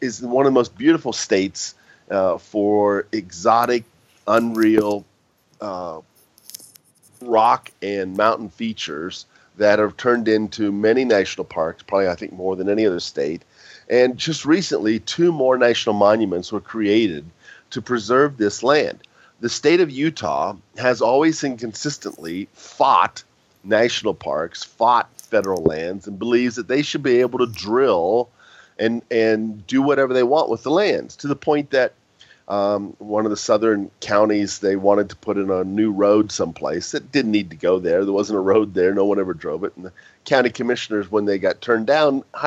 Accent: American